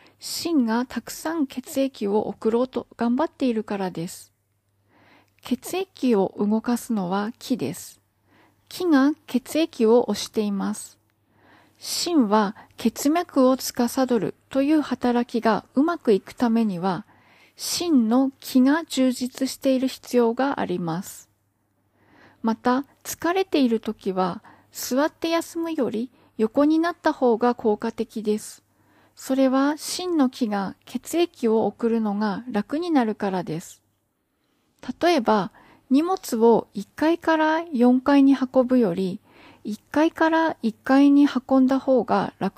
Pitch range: 210-280 Hz